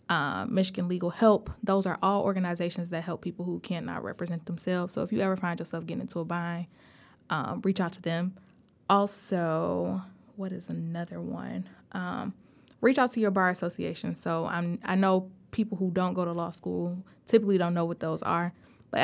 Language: English